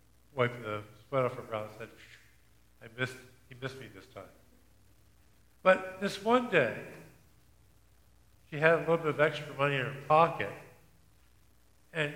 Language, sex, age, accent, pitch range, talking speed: English, male, 50-69, American, 100-140 Hz, 145 wpm